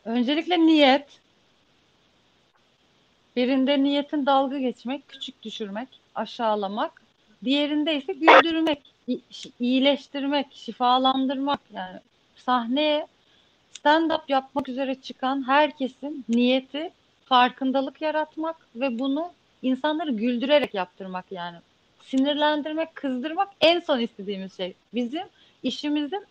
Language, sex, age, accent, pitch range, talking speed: Turkish, female, 40-59, native, 230-300 Hz, 85 wpm